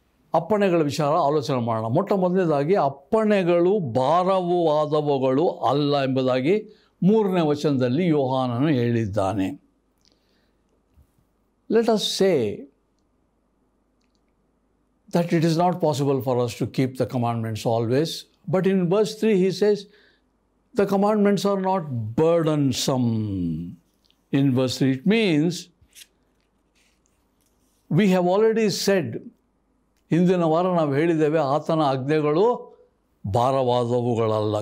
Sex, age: male, 60-79